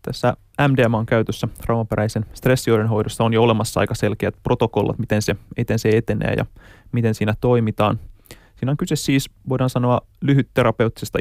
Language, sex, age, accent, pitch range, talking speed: Finnish, male, 30-49, native, 105-125 Hz, 135 wpm